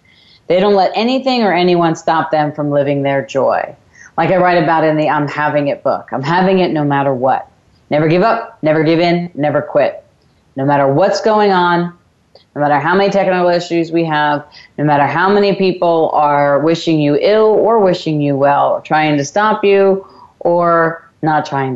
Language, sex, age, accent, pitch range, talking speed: English, female, 30-49, American, 150-185 Hz, 190 wpm